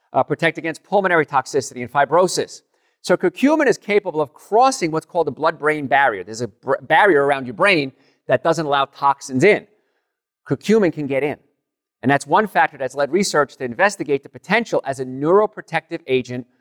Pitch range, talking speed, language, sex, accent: 130-185 Hz, 175 wpm, English, male, American